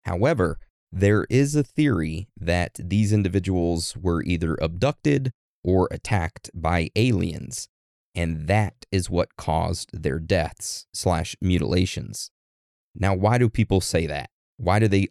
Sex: male